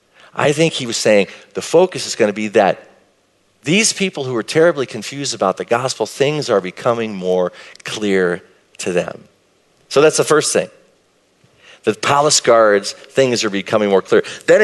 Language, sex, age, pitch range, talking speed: English, male, 40-59, 105-140 Hz, 170 wpm